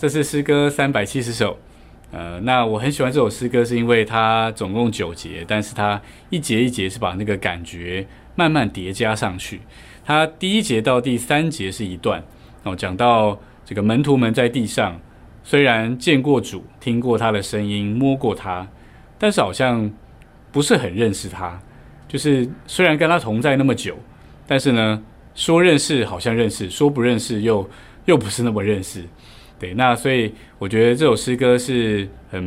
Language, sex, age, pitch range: Chinese, male, 20-39, 100-130 Hz